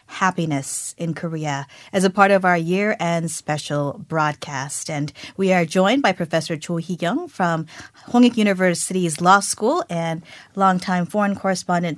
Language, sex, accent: Korean, female, American